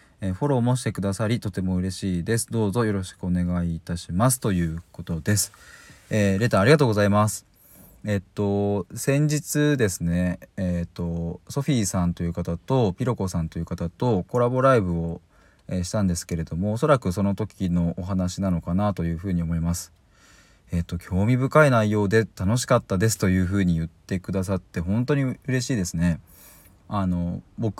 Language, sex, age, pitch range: Japanese, male, 20-39, 90-125 Hz